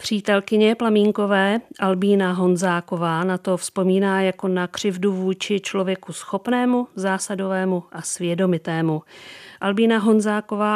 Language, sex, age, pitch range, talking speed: Czech, female, 40-59, 180-215 Hz, 100 wpm